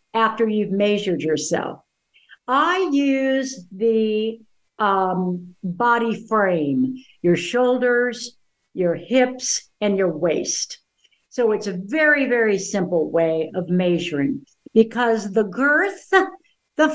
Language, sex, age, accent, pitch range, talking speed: English, female, 60-79, American, 195-250 Hz, 105 wpm